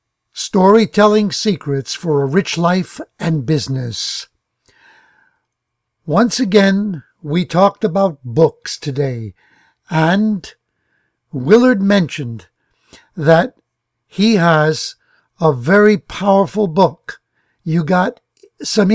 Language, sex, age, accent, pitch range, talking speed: English, male, 60-79, American, 155-205 Hz, 90 wpm